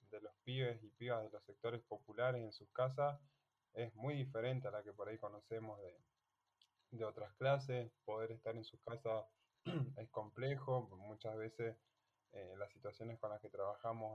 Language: Spanish